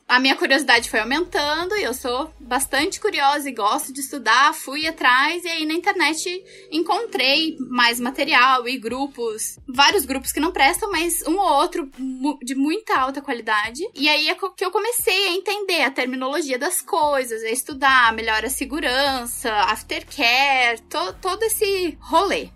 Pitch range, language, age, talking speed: 265-355 Hz, Portuguese, 10-29, 160 wpm